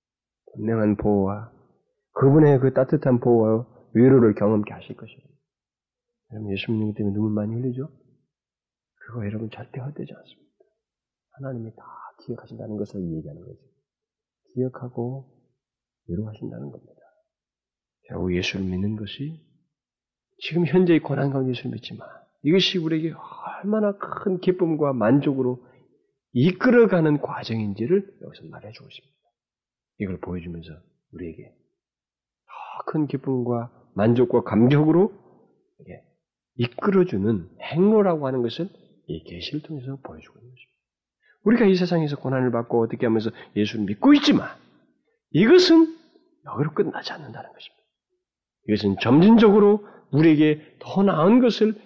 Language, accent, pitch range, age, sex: Korean, native, 110-170 Hz, 30-49, male